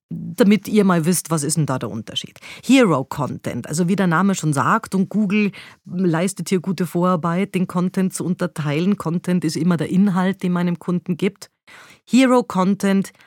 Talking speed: 165 wpm